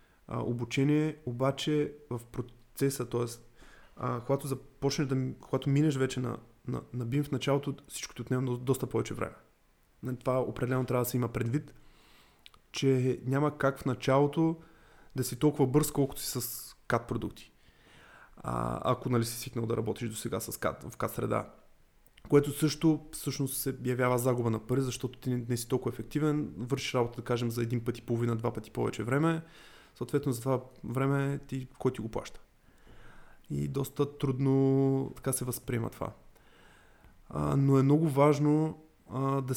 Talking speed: 160 wpm